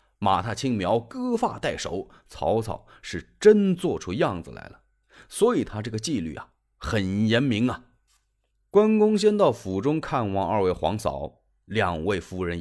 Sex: male